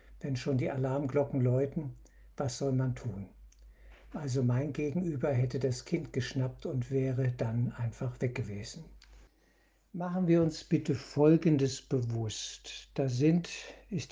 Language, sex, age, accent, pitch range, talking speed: German, male, 60-79, German, 130-170 Hz, 130 wpm